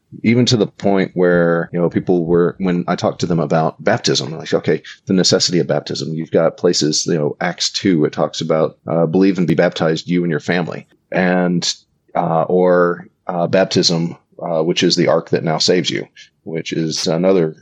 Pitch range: 85-105 Hz